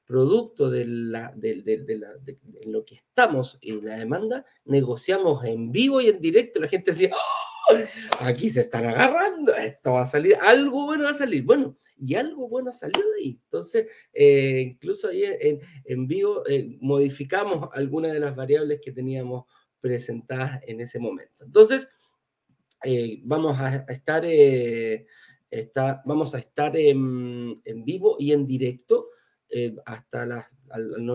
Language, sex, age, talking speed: Spanish, male, 40-59, 160 wpm